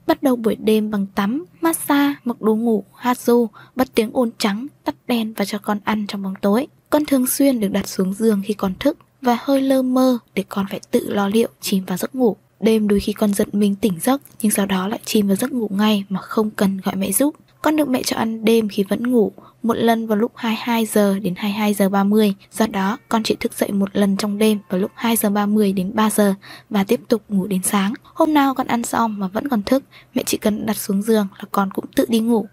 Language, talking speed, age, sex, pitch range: Vietnamese, 250 wpm, 10-29, female, 200-240 Hz